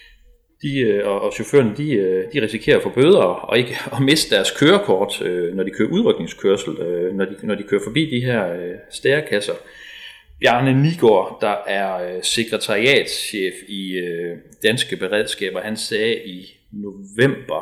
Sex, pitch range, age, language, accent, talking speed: male, 100-155 Hz, 30-49, Danish, native, 135 wpm